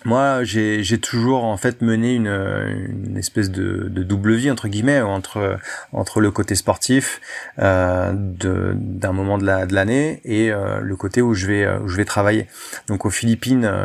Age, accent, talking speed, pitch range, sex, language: 30-49, French, 185 wpm, 100-120 Hz, male, French